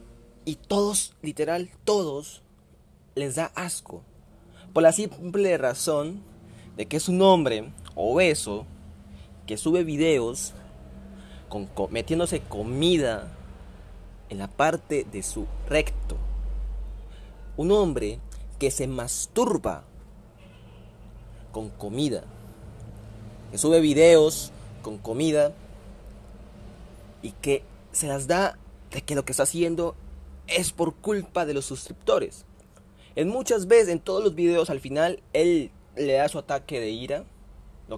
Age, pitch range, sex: 30-49, 100-170 Hz, male